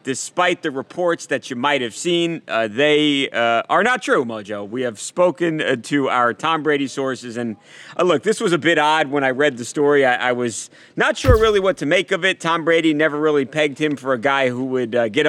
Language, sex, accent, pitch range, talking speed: English, male, American, 120-155 Hz, 240 wpm